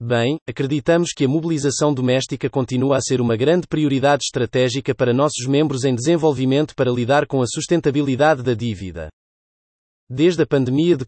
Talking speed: 155 wpm